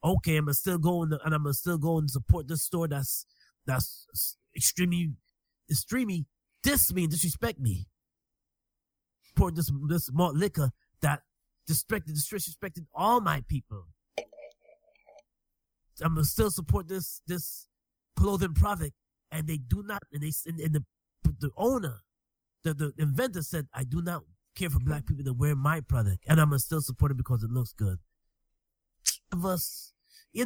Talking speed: 160 wpm